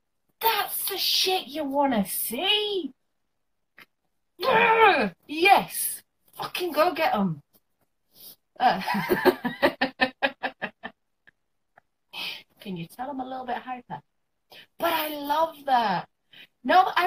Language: Telugu